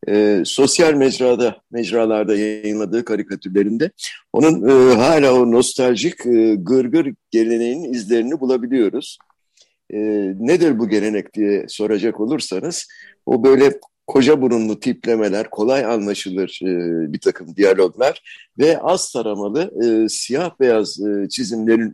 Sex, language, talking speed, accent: male, Turkish, 115 wpm, native